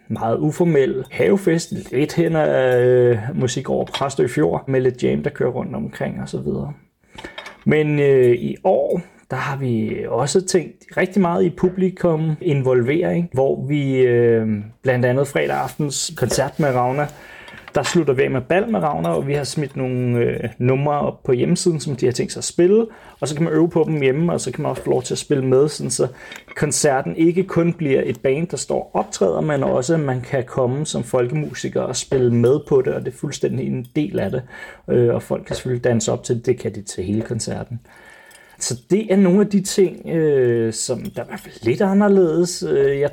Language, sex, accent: Danish, male, native